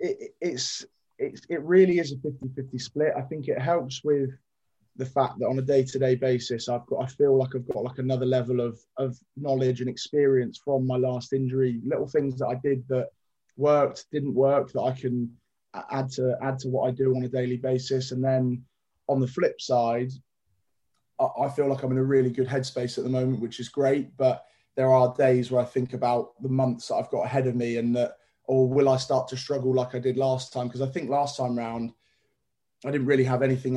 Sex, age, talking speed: male, 20-39, 225 wpm